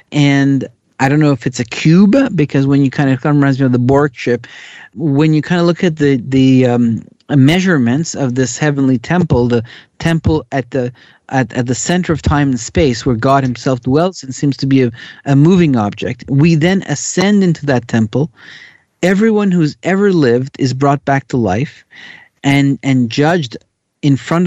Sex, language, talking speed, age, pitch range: male, English, 190 wpm, 40-59, 125-160 Hz